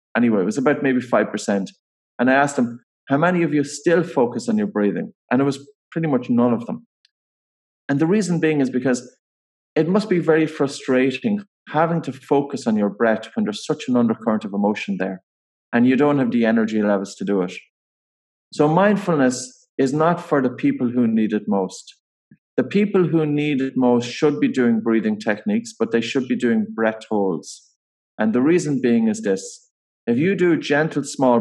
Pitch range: 110-155 Hz